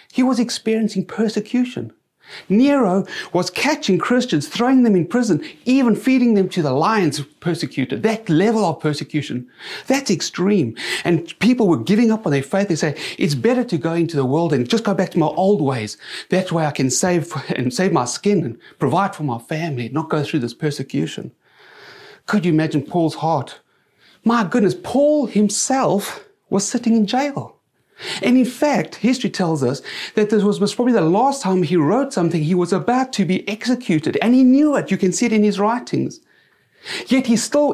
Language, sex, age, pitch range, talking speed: English, male, 30-49, 170-235 Hz, 190 wpm